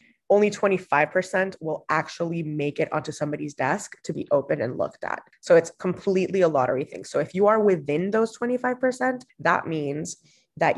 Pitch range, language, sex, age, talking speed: 155-205 Hz, English, female, 20-39, 175 wpm